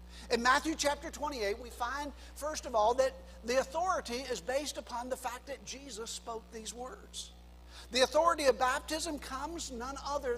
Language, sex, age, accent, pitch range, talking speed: English, male, 60-79, American, 185-260 Hz, 170 wpm